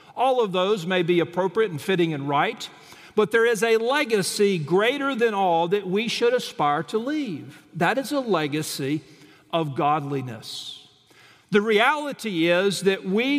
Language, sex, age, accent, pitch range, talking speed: English, male, 50-69, American, 155-215 Hz, 155 wpm